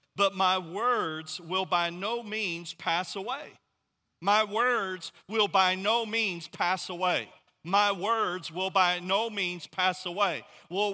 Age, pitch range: 50-69, 180-215 Hz